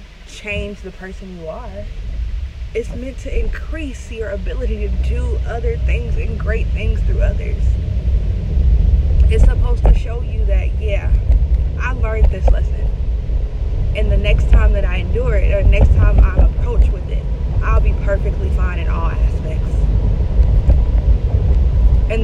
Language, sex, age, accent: English, female, 20-39, American